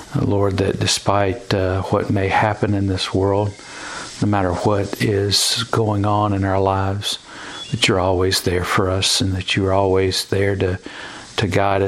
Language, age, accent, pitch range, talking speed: English, 50-69, American, 95-105 Hz, 165 wpm